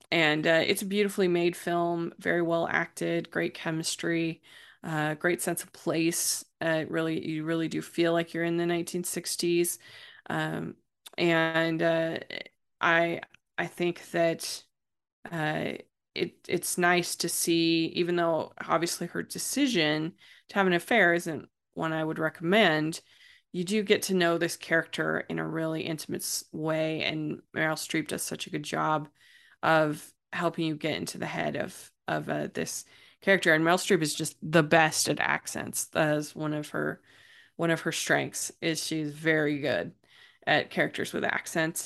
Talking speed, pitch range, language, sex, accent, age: 160 wpm, 155-175 Hz, English, female, American, 20-39